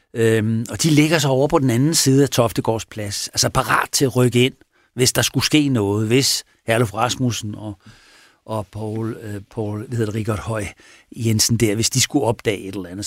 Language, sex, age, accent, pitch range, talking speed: Danish, male, 60-79, native, 110-135 Hz, 200 wpm